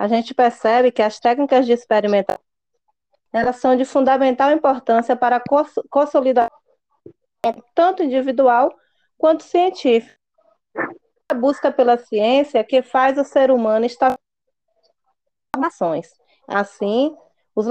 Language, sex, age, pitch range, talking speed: Portuguese, female, 20-39, 225-290 Hz, 110 wpm